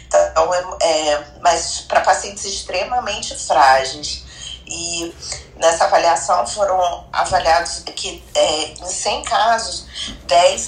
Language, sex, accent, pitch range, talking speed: Portuguese, female, Brazilian, 160-195 Hz, 100 wpm